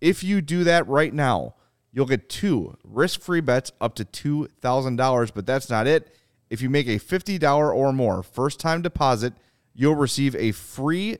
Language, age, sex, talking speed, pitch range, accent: English, 30-49, male, 165 wpm, 110-140 Hz, American